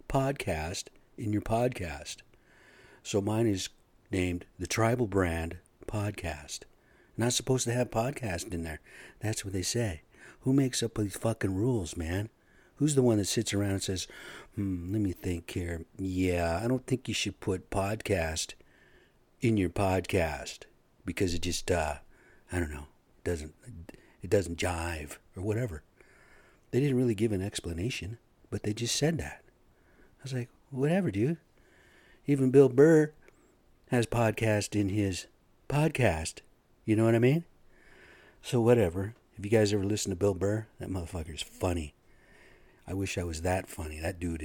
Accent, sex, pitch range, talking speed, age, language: American, male, 85-115 Hz, 160 wpm, 50-69, English